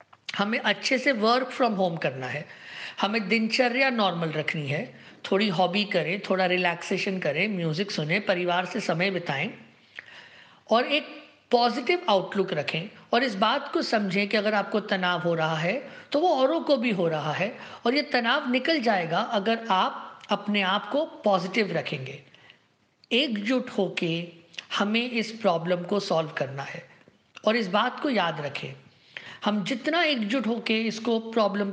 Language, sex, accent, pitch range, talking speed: Hindi, female, native, 180-240 Hz, 155 wpm